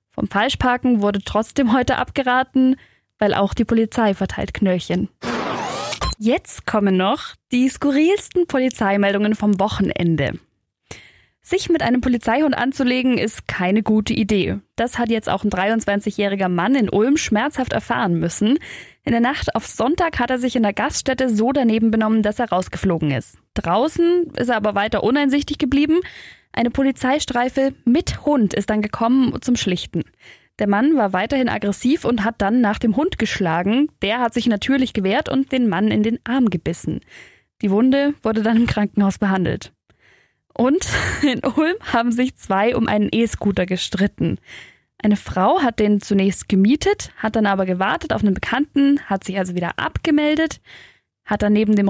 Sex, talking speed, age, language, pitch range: female, 160 wpm, 10-29, German, 205-270 Hz